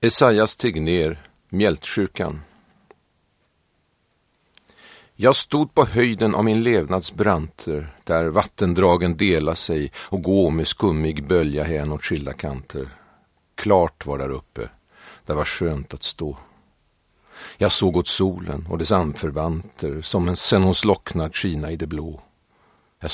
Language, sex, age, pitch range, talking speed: Swedish, male, 50-69, 80-100 Hz, 120 wpm